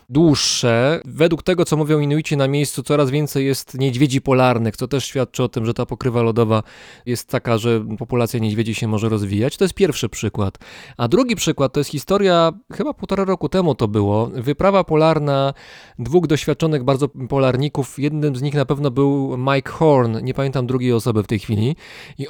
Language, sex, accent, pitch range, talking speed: Polish, male, native, 125-155 Hz, 185 wpm